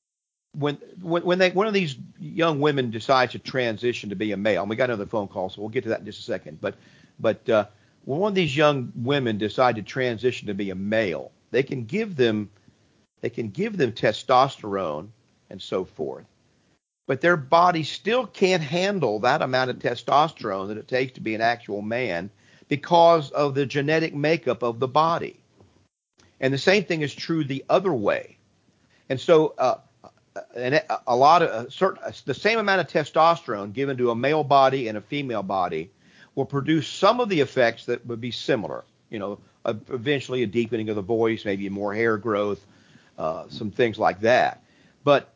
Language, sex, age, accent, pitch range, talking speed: English, male, 50-69, American, 110-150 Hz, 190 wpm